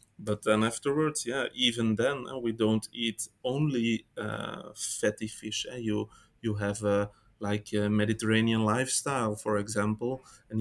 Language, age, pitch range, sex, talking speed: English, 20-39, 105-115 Hz, male, 140 wpm